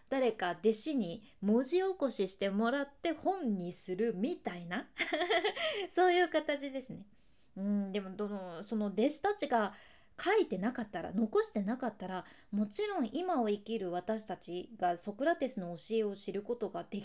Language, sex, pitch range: Japanese, female, 200-310 Hz